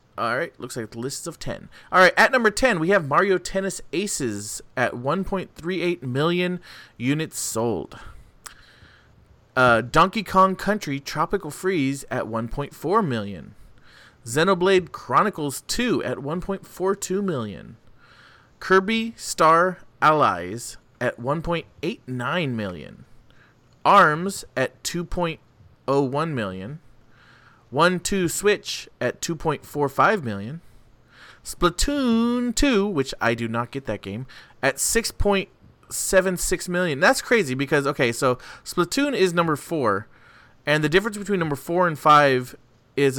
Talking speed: 110 wpm